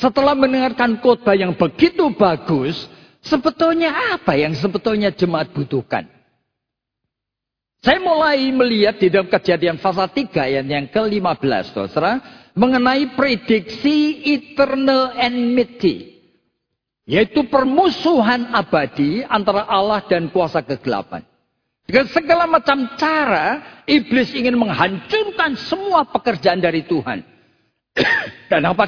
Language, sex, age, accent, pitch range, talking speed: Indonesian, male, 50-69, native, 175-250 Hz, 100 wpm